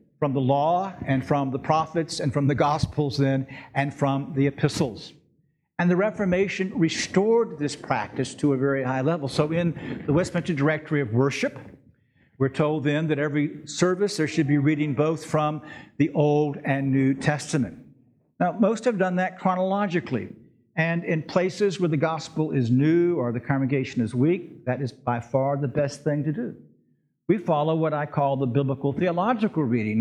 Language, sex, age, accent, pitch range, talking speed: English, male, 60-79, American, 140-175 Hz, 175 wpm